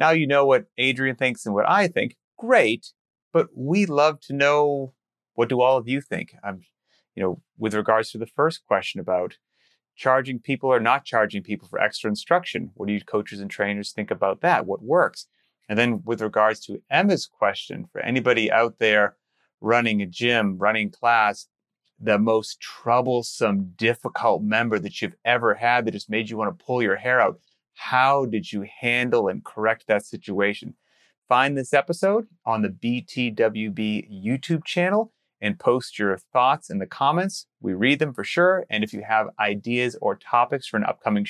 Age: 30-49